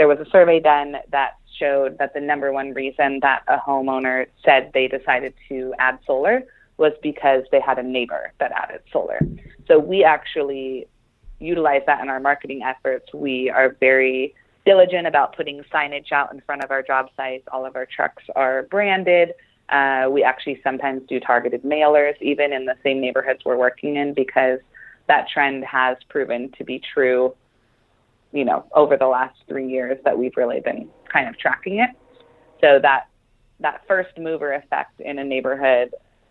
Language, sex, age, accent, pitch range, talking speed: English, female, 20-39, American, 130-150 Hz, 175 wpm